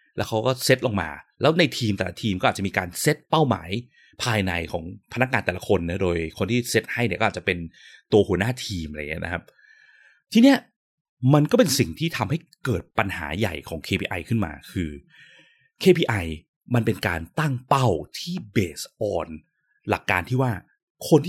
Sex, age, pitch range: male, 30-49, 95-140 Hz